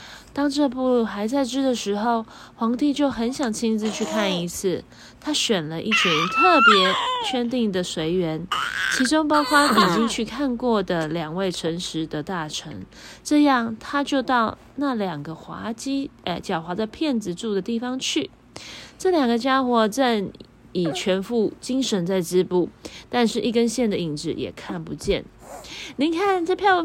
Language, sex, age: Chinese, female, 20-39